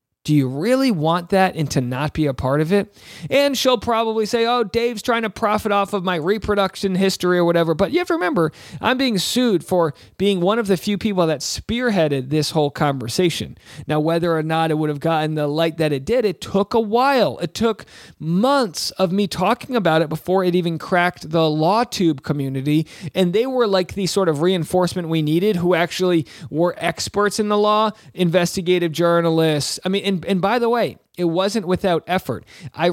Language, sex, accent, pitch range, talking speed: English, male, American, 160-210 Hz, 210 wpm